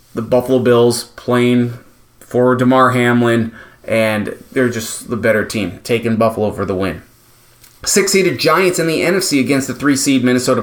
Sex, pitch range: male, 115-145 Hz